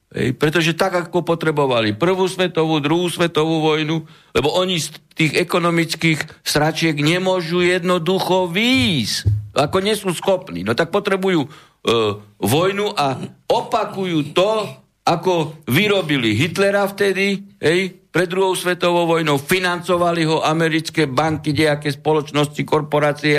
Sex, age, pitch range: male, 60-79, 135-170 Hz